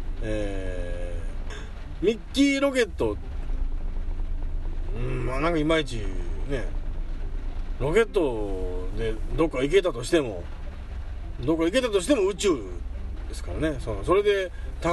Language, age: Japanese, 40-59